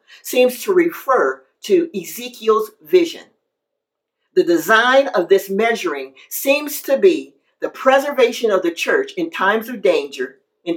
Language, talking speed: English, 135 wpm